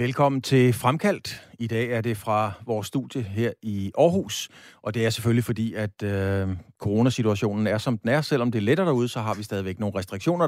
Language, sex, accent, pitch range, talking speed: Danish, male, native, 105-135 Hz, 200 wpm